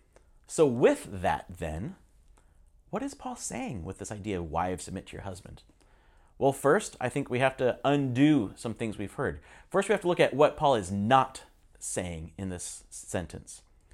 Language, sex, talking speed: English, male, 185 wpm